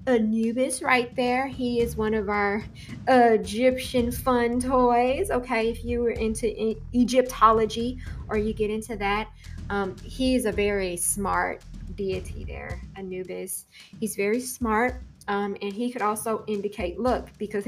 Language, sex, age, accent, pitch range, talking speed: English, female, 20-39, American, 205-255 Hz, 140 wpm